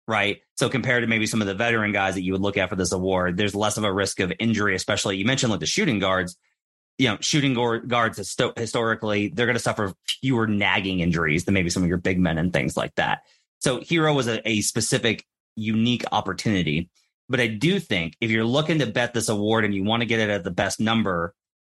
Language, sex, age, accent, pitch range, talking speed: English, male, 30-49, American, 95-120 Hz, 240 wpm